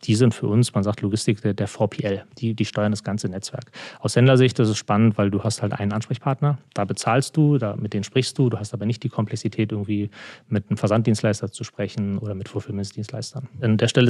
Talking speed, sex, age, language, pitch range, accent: 220 wpm, male, 30-49, German, 105-125 Hz, German